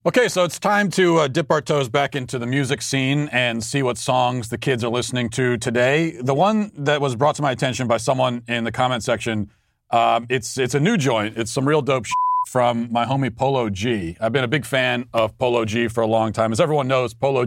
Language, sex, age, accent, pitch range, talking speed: English, male, 40-59, American, 115-135 Hz, 240 wpm